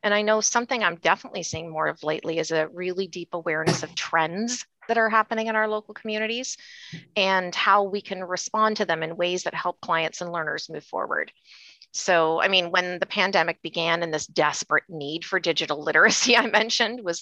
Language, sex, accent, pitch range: English, female, American, 170-215 Hz